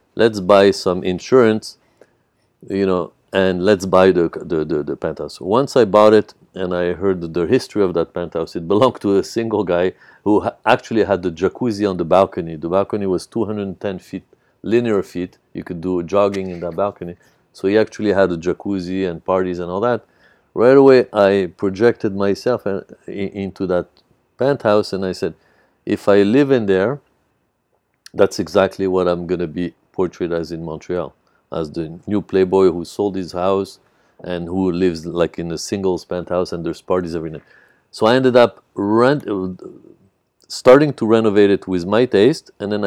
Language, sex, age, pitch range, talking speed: English, male, 50-69, 90-105 Hz, 185 wpm